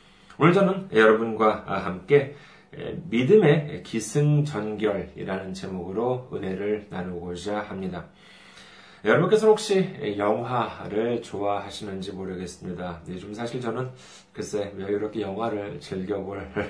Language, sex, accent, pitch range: Korean, male, native, 105-160 Hz